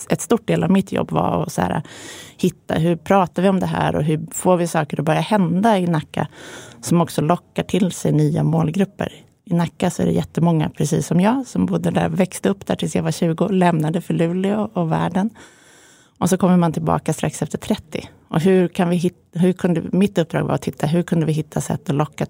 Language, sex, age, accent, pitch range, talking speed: Swedish, female, 30-49, native, 155-185 Hz, 225 wpm